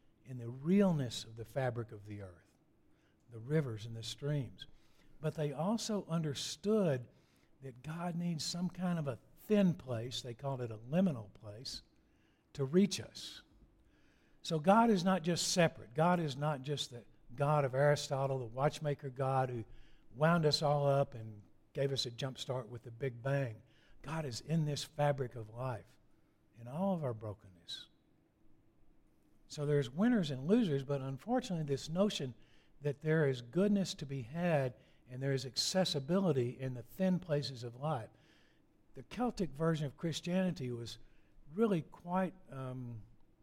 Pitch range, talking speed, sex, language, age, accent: 125-165 Hz, 160 wpm, male, English, 60-79, American